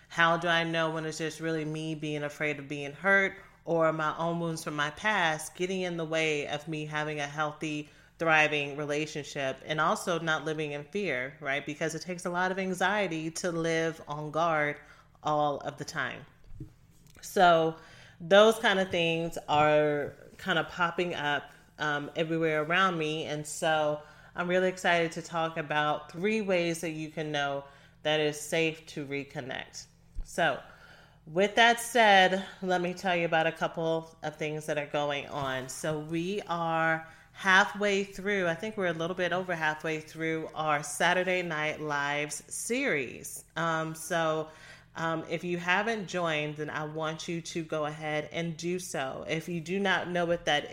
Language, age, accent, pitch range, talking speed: English, 30-49, American, 155-180 Hz, 175 wpm